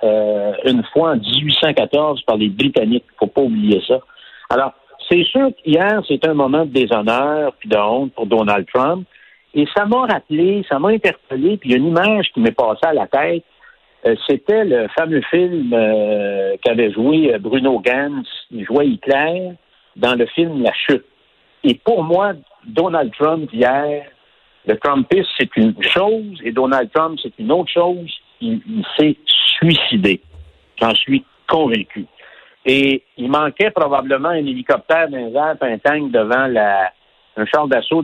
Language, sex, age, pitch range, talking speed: French, male, 60-79, 120-185 Hz, 165 wpm